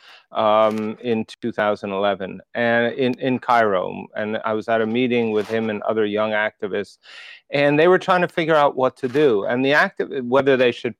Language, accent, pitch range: English, American, 115-150 Hz